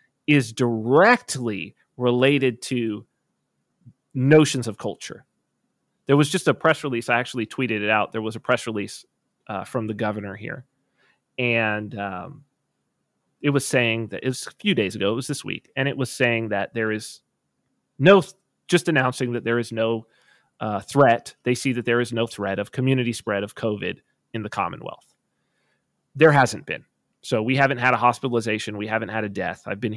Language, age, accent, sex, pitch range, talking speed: English, 30-49, American, male, 110-140 Hz, 180 wpm